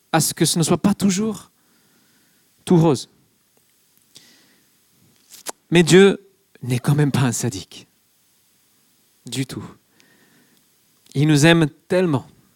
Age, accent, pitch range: 40-59, French, 130-180 Hz